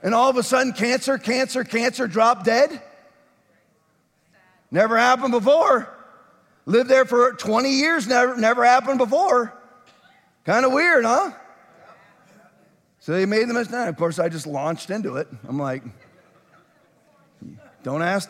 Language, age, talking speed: English, 40-59, 135 wpm